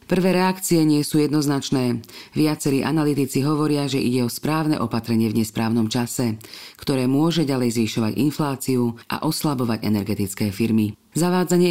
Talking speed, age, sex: 135 wpm, 40-59, female